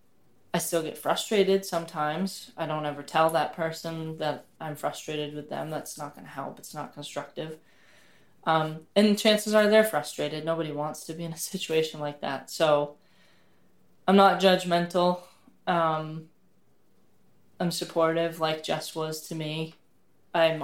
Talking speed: 150 wpm